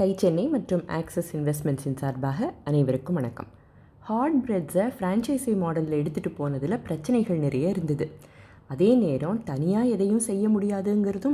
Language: Tamil